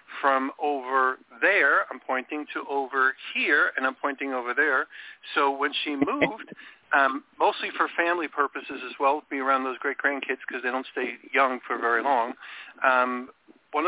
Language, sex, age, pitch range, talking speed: English, male, 50-69, 130-165 Hz, 170 wpm